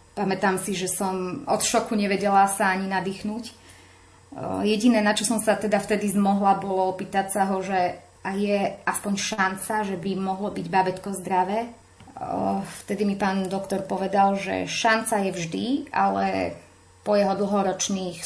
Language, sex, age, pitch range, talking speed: Slovak, female, 30-49, 180-200 Hz, 150 wpm